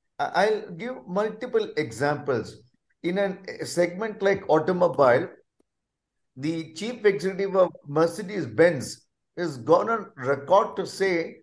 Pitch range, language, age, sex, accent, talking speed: 160-195 Hz, English, 50-69, male, Indian, 105 wpm